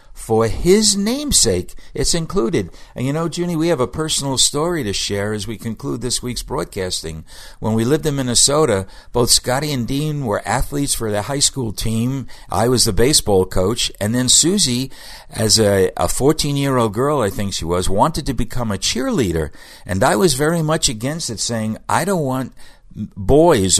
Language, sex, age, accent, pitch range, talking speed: English, male, 60-79, American, 95-135 Hz, 185 wpm